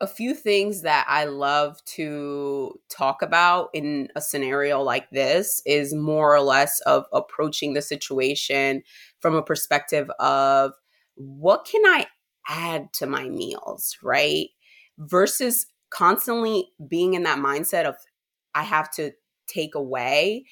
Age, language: 20-39, English